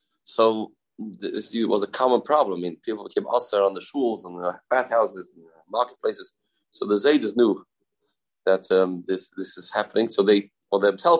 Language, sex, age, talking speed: English, male, 30-49, 190 wpm